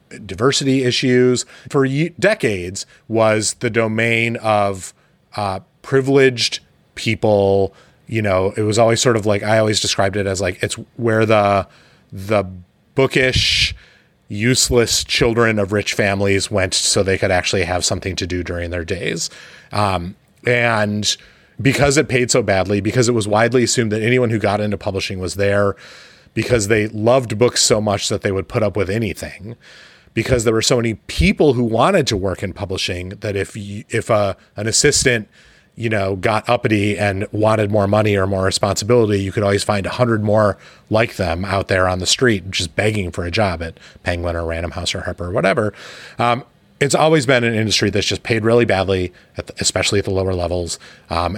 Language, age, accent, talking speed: English, 30-49, American, 180 wpm